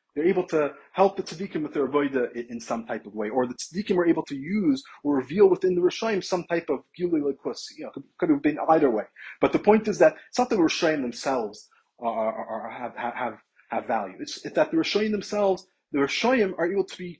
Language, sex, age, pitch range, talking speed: English, male, 30-49, 125-205 Hz, 235 wpm